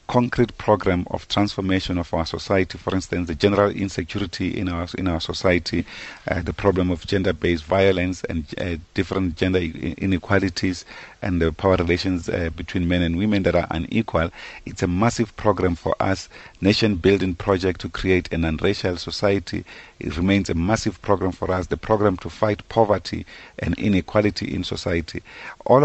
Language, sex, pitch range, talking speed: English, male, 85-100 Hz, 165 wpm